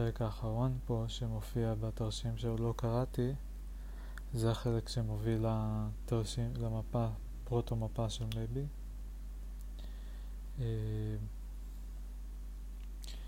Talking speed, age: 75 wpm, 20-39